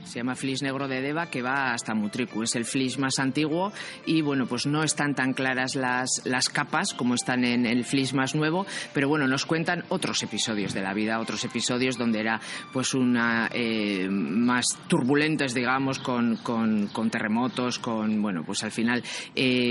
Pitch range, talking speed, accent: 115-140 Hz, 185 wpm, Spanish